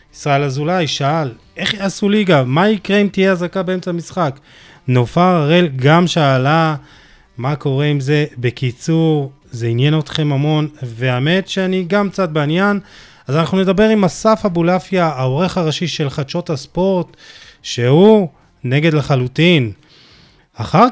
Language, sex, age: Hebrew, male, 30-49